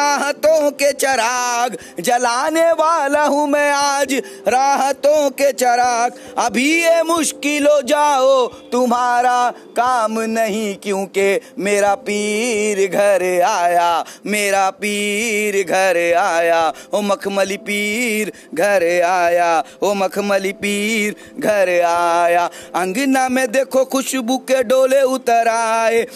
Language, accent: Hindi, native